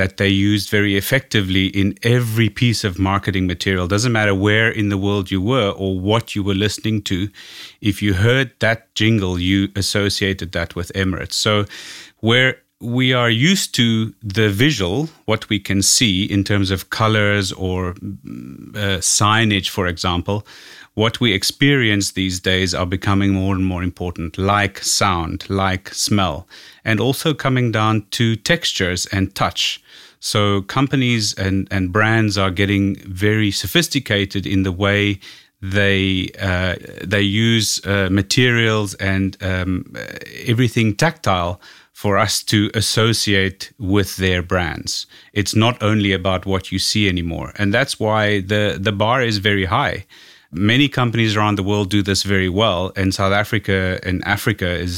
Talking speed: 155 wpm